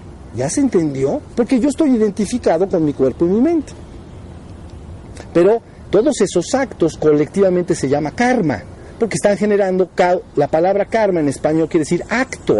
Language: Spanish